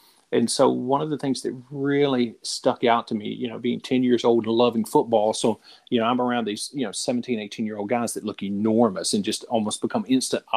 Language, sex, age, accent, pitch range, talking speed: English, male, 40-59, American, 115-130 Hz, 240 wpm